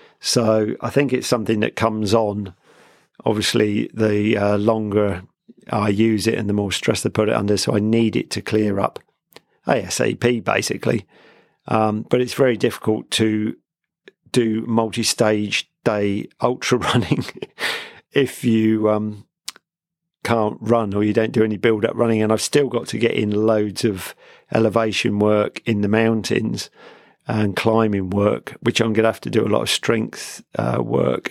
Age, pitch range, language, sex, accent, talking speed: 50-69, 105-120 Hz, English, male, British, 165 wpm